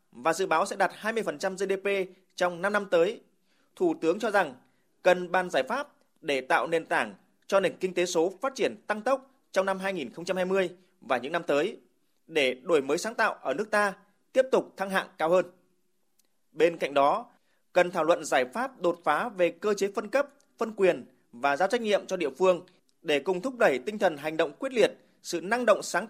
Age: 20-39